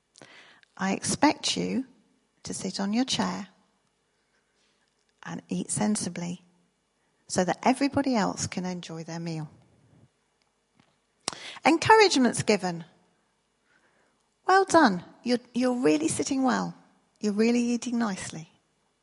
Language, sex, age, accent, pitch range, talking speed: English, female, 40-59, British, 180-245 Hz, 100 wpm